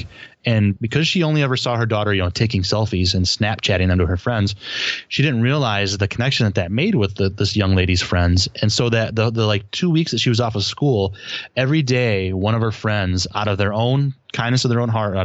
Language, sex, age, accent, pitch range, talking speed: English, male, 20-39, American, 95-115 Hz, 245 wpm